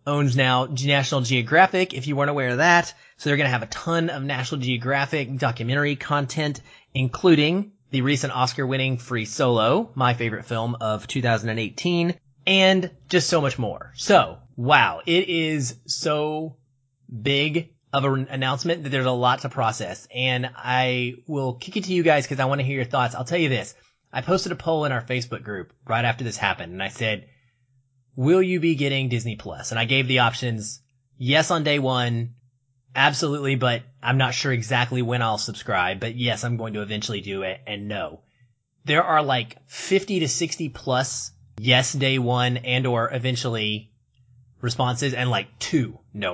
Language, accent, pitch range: English, American, 120-145 Hz